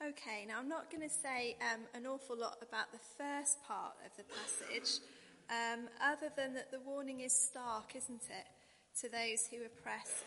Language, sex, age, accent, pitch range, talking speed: English, female, 30-49, British, 225-255 Hz, 185 wpm